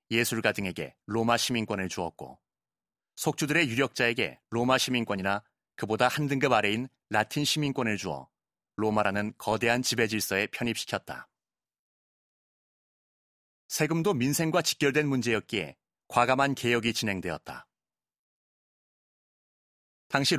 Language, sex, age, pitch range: Korean, male, 30-49, 110-135 Hz